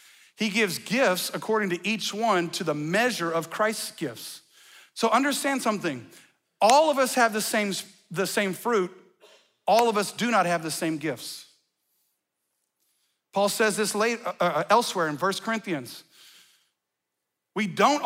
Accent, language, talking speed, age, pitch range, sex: American, English, 145 wpm, 40-59, 175-220 Hz, male